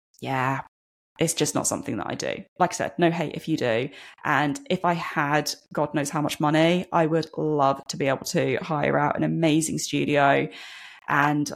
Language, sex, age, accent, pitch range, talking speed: English, female, 20-39, British, 150-185 Hz, 195 wpm